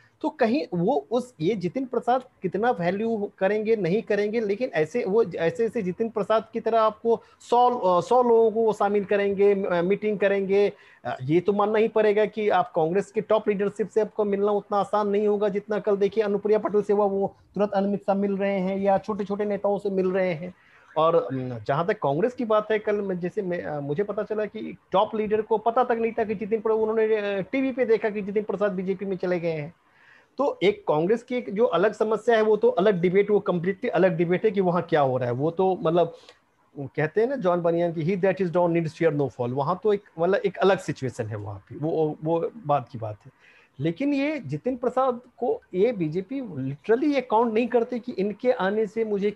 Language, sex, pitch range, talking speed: Hindi, male, 175-220 Hz, 220 wpm